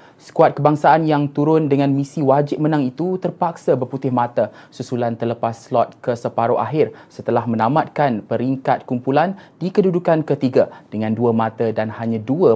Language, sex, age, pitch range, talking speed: Malay, male, 20-39, 115-155 Hz, 150 wpm